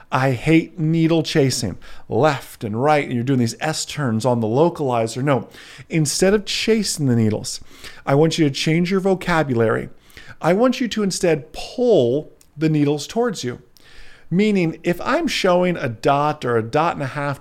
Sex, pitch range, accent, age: male, 120-170 Hz, American, 40-59